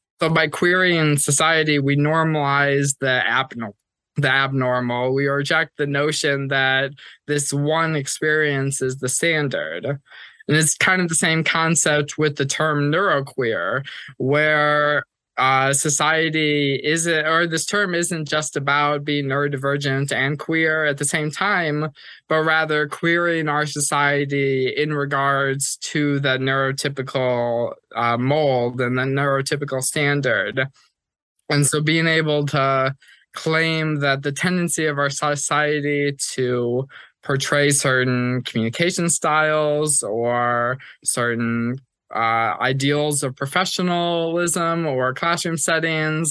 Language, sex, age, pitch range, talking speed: English, male, 20-39, 135-155 Hz, 120 wpm